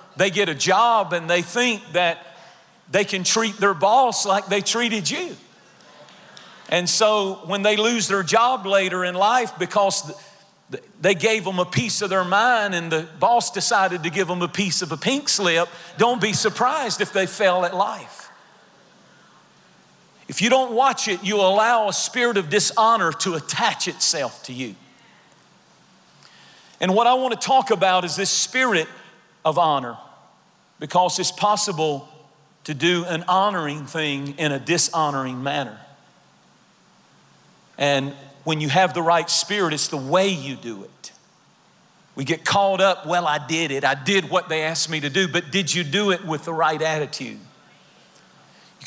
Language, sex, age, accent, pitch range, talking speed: English, male, 40-59, American, 160-210 Hz, 165 wpm